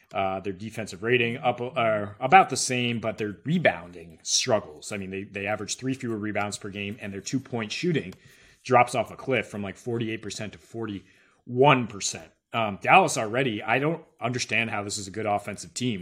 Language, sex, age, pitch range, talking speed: English, male, 30-49, 105-125 Hz, 180 wpm